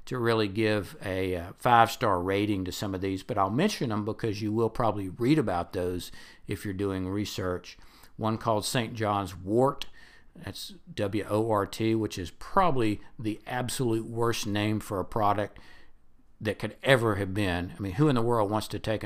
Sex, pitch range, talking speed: male, 95-115 Hz, 175 wpm